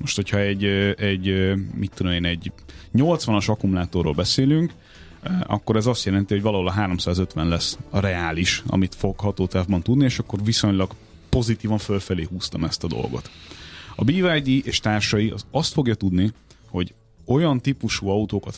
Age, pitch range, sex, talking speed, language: 30-49, 90-115 Hz, male, 150 wpm, Hungarian